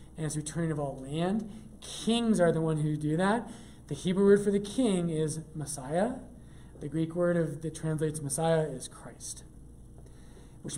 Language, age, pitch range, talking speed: English, 30-49, 150-195 Hz, 175 wpm